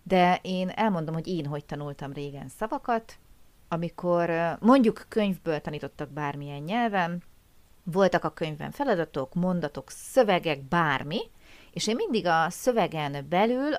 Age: 30-49